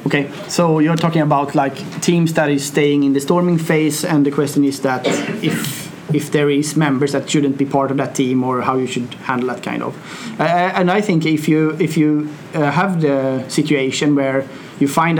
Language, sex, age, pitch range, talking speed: Swedish, male, 30-49, 140-160 Hz, 215 wpm